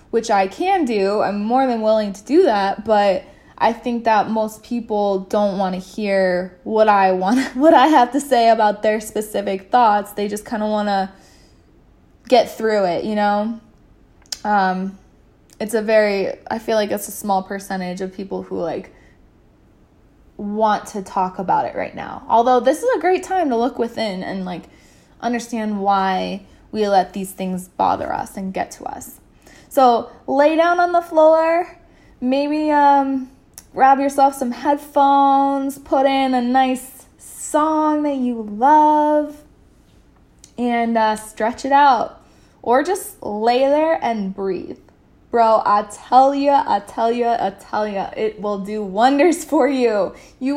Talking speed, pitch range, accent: 165 wpm, 205-270 Hz, American